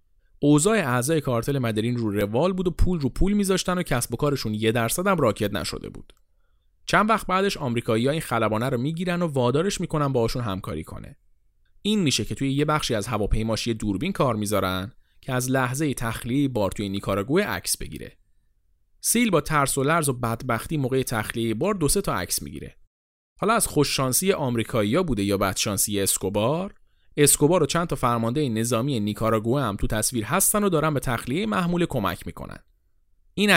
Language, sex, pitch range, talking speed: Persian, male, 110-165 Hz, 180 wpm